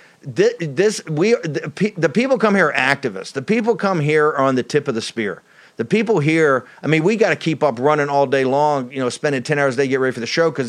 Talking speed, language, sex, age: 275 wpm, English, male, 40-59